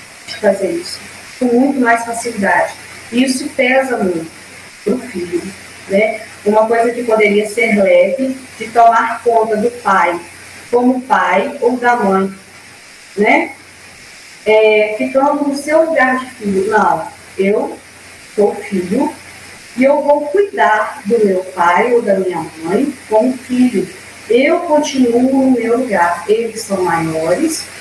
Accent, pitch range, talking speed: Brazilian, 215-280 Hz, 140 wpm